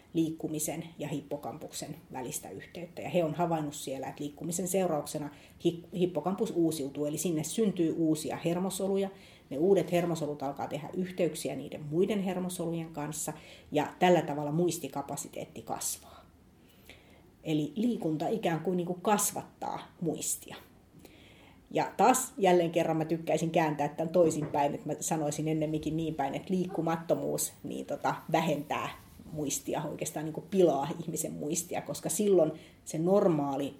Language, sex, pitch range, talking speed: Finnish, female, 150-175 Hz, 125 wpm